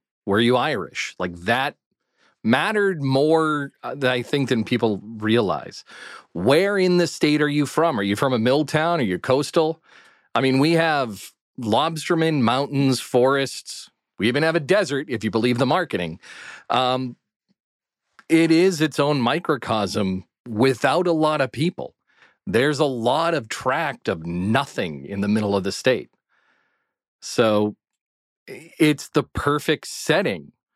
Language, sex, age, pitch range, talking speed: English, male, 40-59, 115-150 Hz, 150 wpm